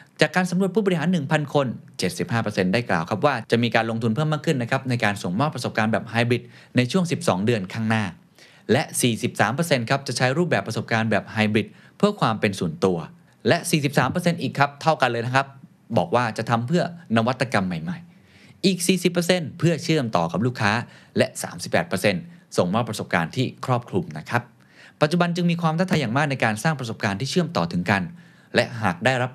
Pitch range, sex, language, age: 115-165 Hz, male, Thai, 20-39